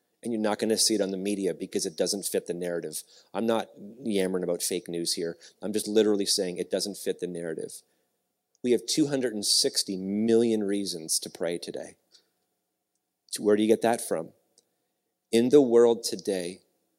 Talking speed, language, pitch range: 175 wpm, English, 100-125 Hz